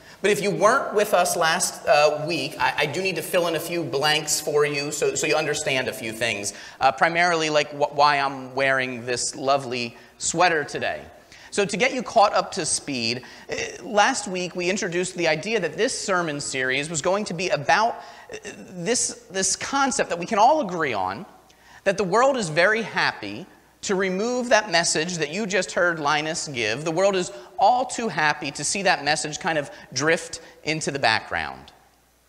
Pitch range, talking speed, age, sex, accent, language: 150-205 Hz, 190 wpm, 30-49, male, American, English